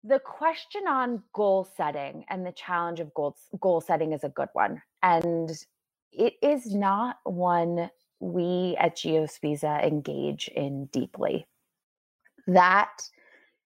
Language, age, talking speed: English, 20-39, 125 wpm